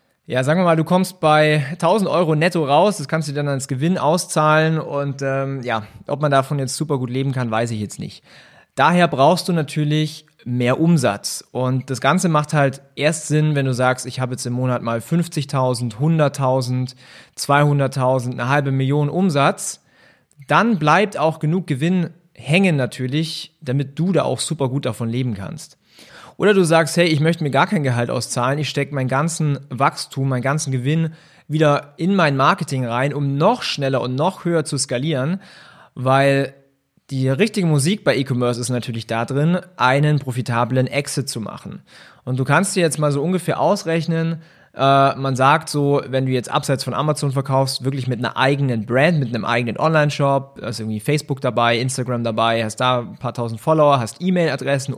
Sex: male